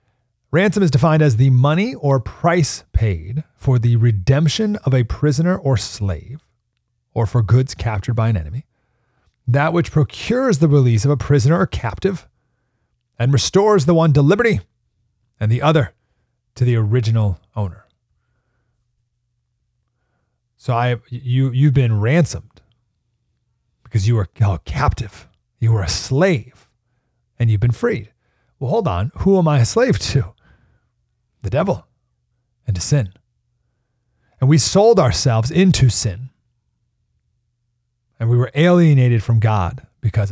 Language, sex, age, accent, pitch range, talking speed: English, male, 30-49, American, 115-135 Hz, 135 wpm